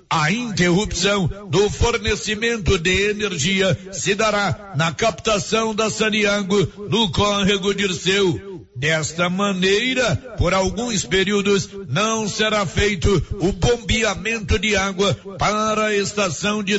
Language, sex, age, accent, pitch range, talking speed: Portuguese, male, 60-79, Brazilian, 185-210 Hz, 110 wpm